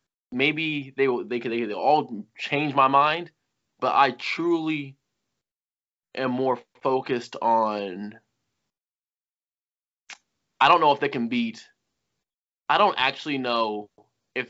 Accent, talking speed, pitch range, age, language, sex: American, 125 wpm, 120-185 Hz, 20-39, English, male